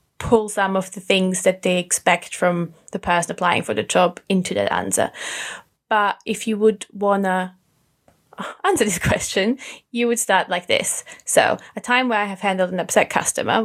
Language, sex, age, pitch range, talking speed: English, female, 20-39, 185-225 Hz, 185 wpm